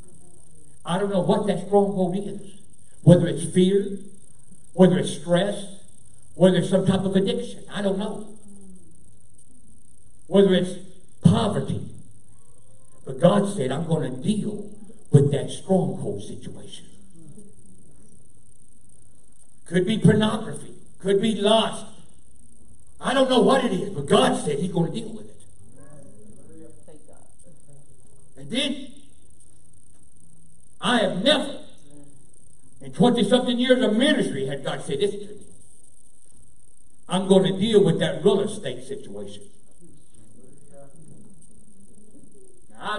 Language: English